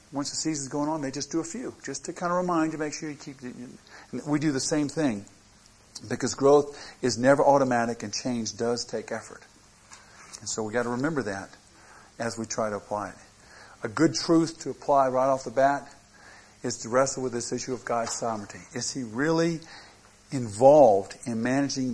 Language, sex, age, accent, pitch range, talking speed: English, male, 50-69, American, 115-140 Hz, 200 wpm